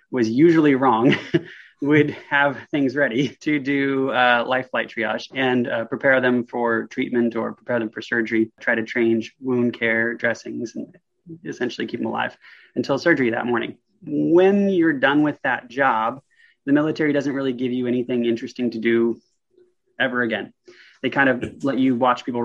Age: 20-39